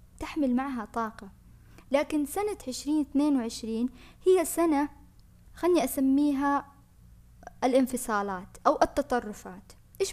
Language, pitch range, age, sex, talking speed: Arabic, 230-290 Hz, 20-39, female, 95 wpm